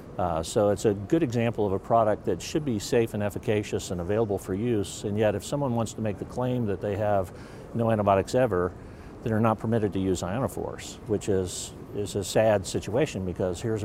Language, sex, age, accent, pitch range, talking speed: English, male, 50-69, American, 95-115 Hz, 210 wpm